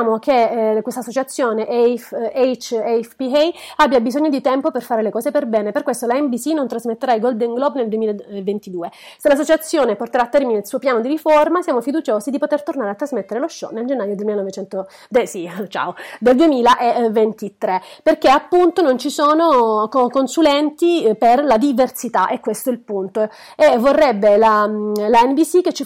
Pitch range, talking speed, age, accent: 215-285 Hz, 165 wpm, 30-49, native